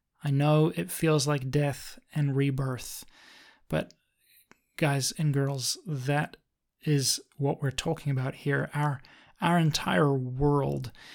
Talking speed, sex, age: 125 wpm, male, 30-49